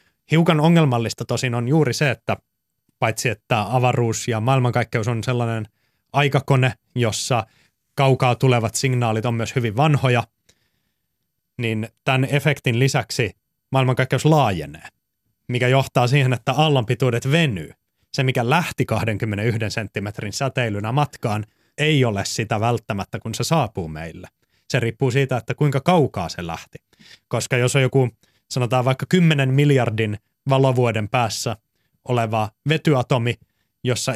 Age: 30-49